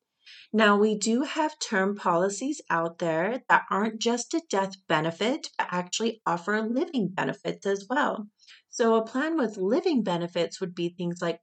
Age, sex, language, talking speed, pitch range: 30-49, female, English, 165 wpm, 180-230 Hz